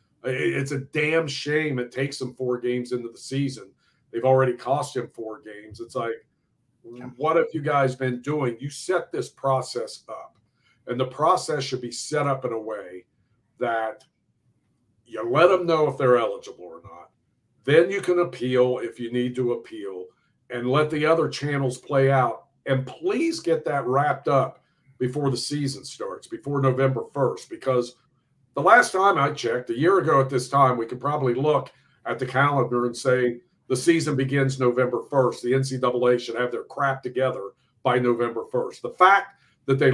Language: English